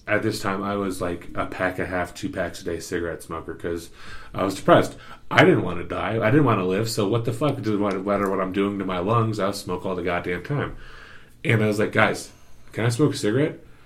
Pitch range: 100-130 Hz